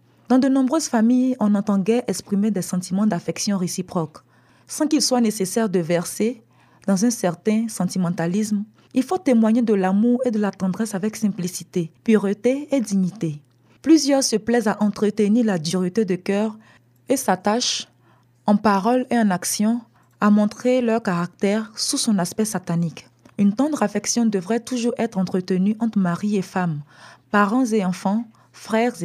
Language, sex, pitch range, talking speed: French, female, 180-225 Hz, 155 wpm